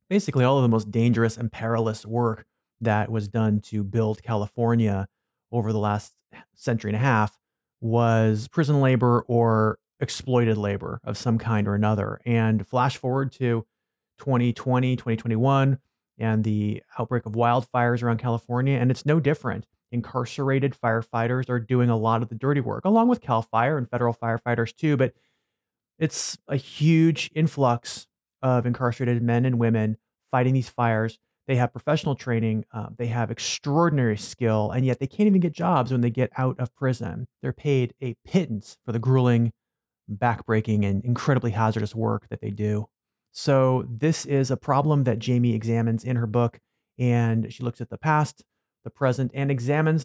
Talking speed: 165 wpm